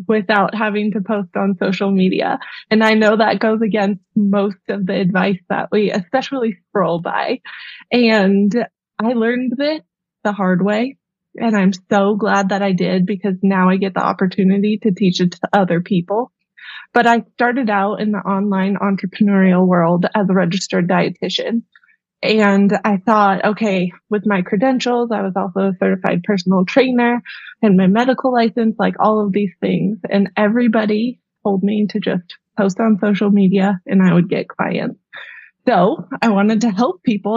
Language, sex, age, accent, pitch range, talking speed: English, female, 20-39, American, 195-225 Hz, 170 wpm